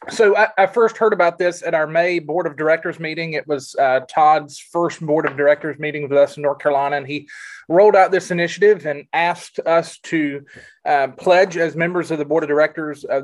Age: 30-49